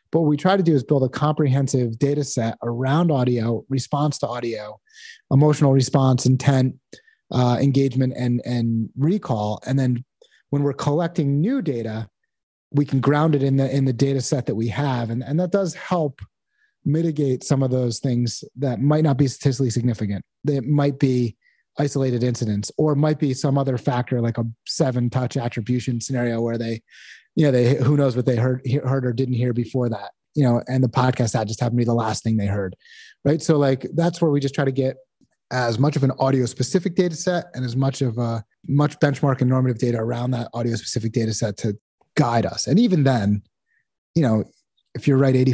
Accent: American